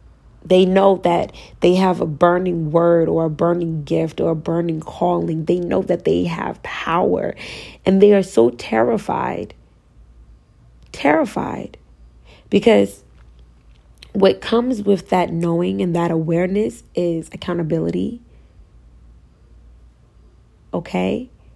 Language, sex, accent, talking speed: English, female, American, 110 wpm